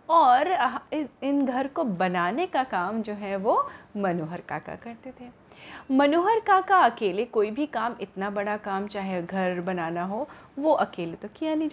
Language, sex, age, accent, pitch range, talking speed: Hindi, female, 30-49, native, 210-285 Hz, 170 wpm